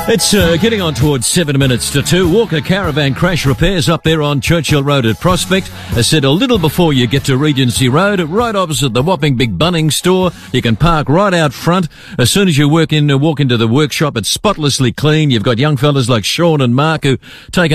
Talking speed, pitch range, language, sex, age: 225 wpm, 120-160 Hz, English, male, 50-69